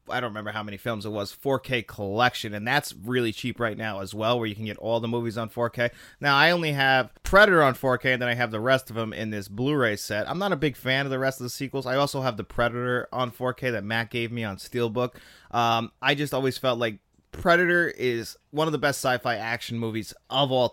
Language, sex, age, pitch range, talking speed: English, male, 30-49, 110-135 Hz, 250 wpm